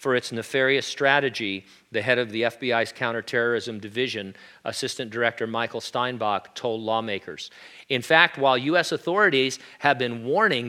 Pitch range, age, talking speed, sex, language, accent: 115-140 Hz, 40-59, 140 wpm, male, English, American